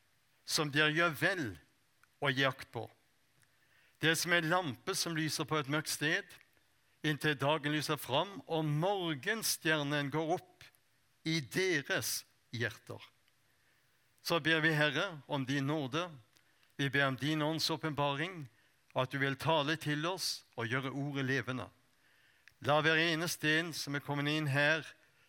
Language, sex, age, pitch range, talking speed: Danish, male, 60-79, 130-165 Hz, 145 wpm